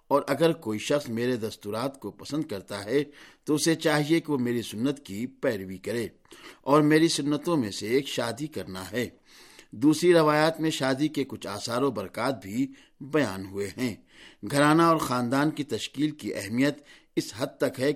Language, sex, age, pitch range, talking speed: Urdu, male, 50-69, 115-150 Hz, 175 wpm